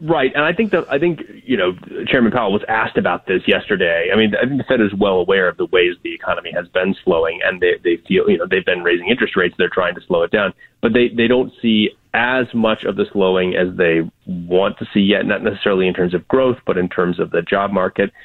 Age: 30-49